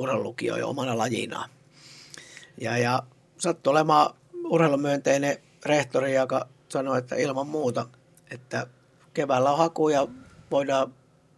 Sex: male